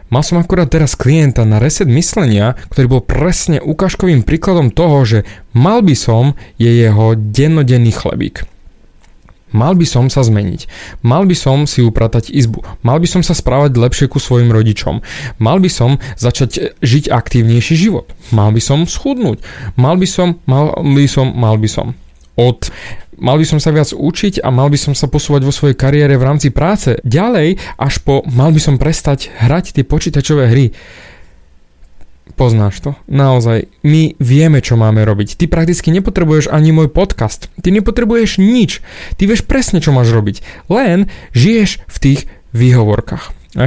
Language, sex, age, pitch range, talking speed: Slovak, male, 30-49, 115-160 Hz, 165 wpm